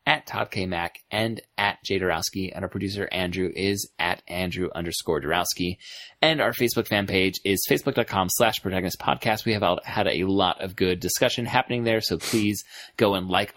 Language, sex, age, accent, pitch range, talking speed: English, male, 30-49, American, 90-110 Hz, 190 wpm